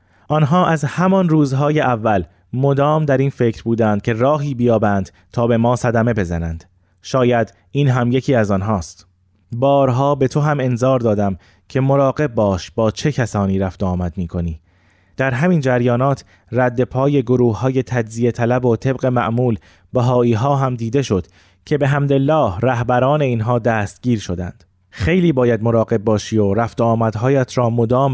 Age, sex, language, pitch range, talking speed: 30-49, male, Persian, 95-130 Hz, 155 wpm